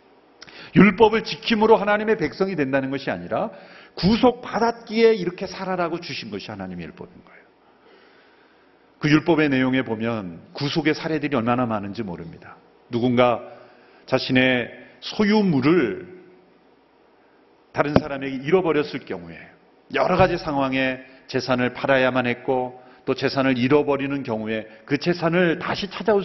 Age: 40-59